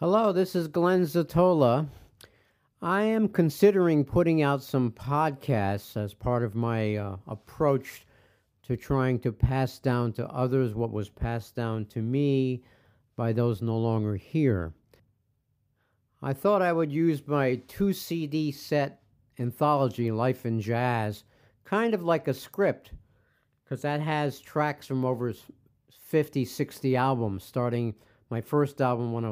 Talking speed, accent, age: 140 wpm, American, 50-69